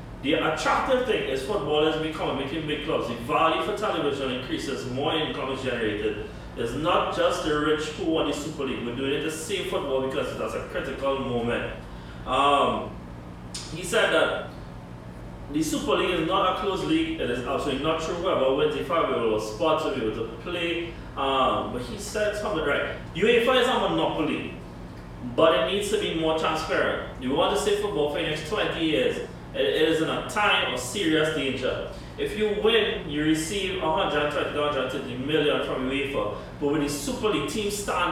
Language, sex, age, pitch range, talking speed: English, male, 30-49, 140-220 Hz, 185 wpm